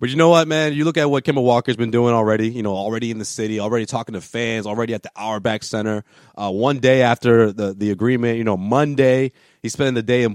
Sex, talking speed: male, 255 wpm